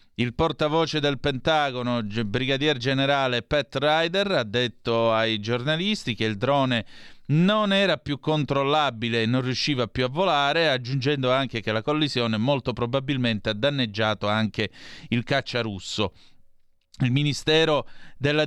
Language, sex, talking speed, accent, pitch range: Italian, male, 135 wpm, native, 120-145 Hz